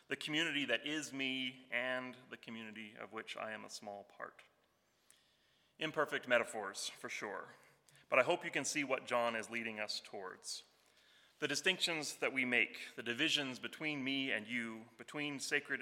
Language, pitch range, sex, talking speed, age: English, 115-145 Hz, male, 165 wpm, 30-49